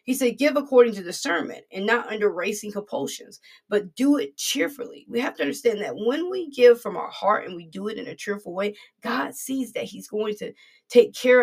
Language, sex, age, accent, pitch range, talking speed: English, female, 20-39, American, 205-260 Hz, 220 wpm